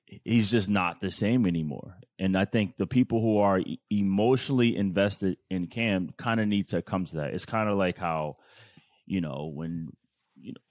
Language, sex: English, male